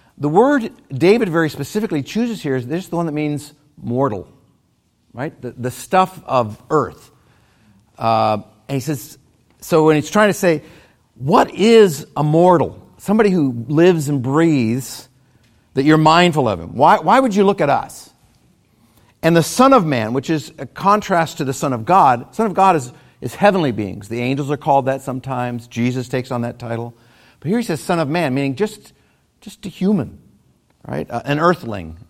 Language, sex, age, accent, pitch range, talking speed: English, male, 50-69, American, 120-180 Hz, 185 wpm